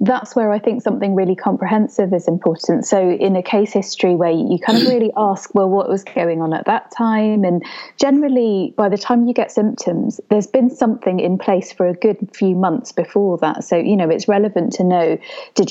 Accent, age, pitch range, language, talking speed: British, 20-39, 175-215 Hz, English, 215 wpm